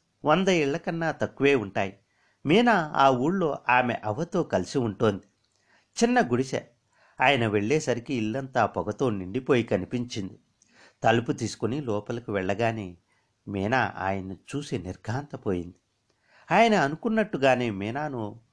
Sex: male